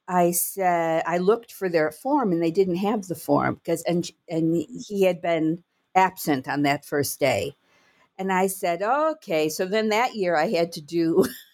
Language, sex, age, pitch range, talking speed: English, female, 50-69, 160-200 Hz, 190 wpm